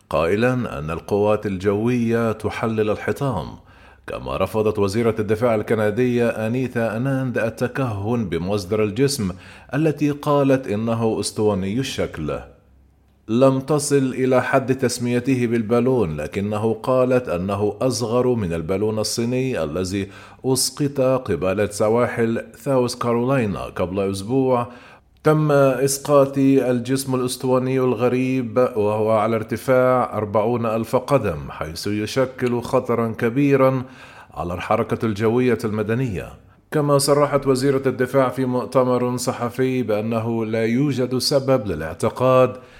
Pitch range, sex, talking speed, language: 105-130 Hz, male, 100 wpm, Arabic